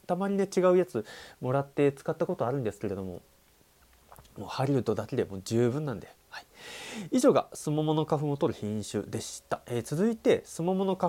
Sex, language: male, Japanese